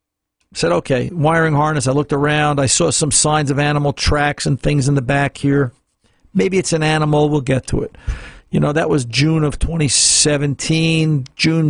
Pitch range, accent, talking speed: 105-155 Hz, American, 185 wpm